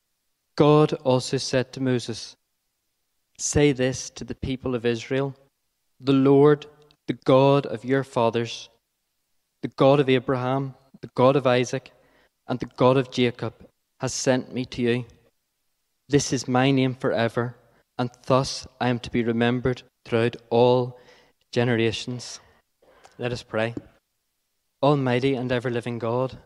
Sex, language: male, English